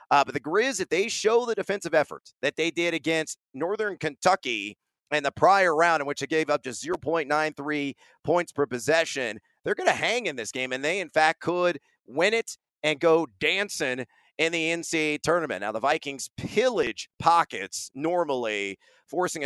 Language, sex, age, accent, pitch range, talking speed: English, male, 40-59, American, 140-205 Hz, 180 wpm